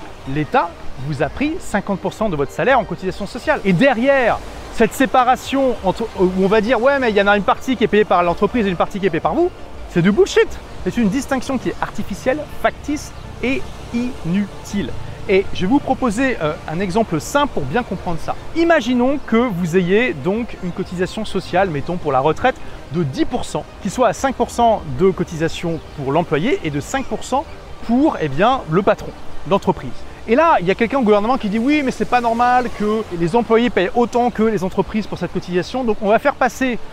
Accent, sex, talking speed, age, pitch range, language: French, male, 205 wpm, 30-49, 180-255 Hz, French